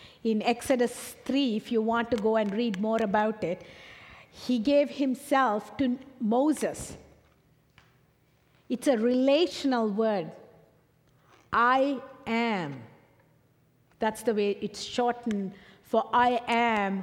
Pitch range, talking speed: 185-265 Hz, 115 wpm